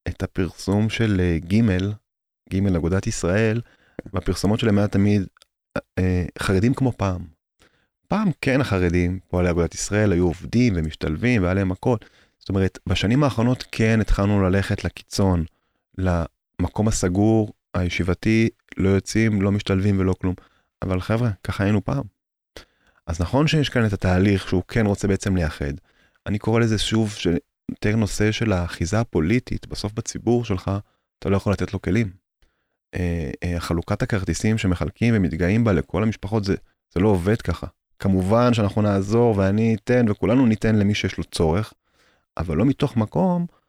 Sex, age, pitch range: male, 30-49, 90-115 Hz